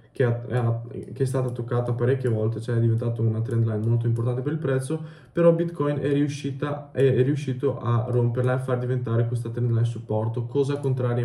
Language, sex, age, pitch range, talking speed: Italian, male, 20-39, 115-130 Hz, 185 wpm